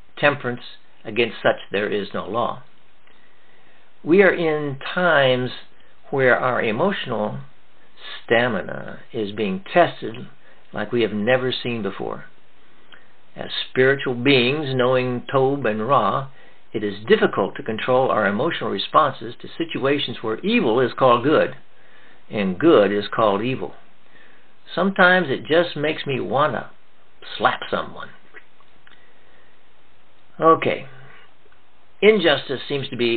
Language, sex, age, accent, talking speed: English, male, 60-79, American, 120 wpm